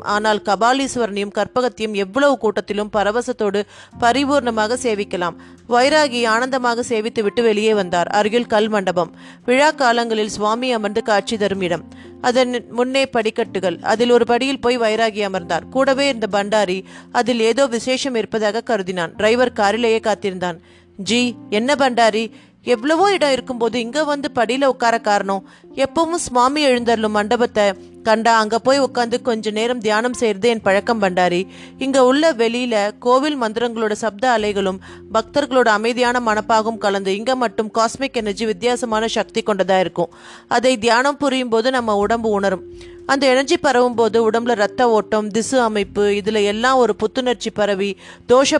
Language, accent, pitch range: Tamil, native, 205-250 Hz